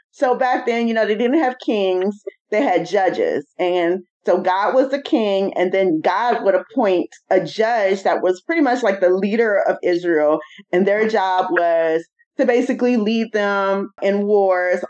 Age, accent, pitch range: 20-39, American, 190-250 Hz